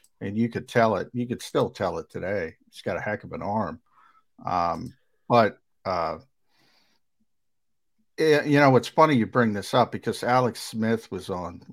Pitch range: 110-135 Hz